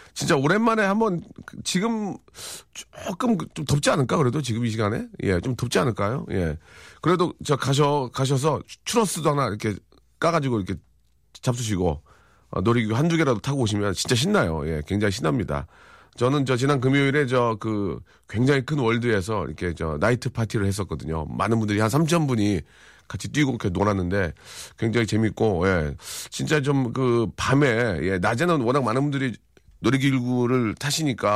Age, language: 40-59, Korean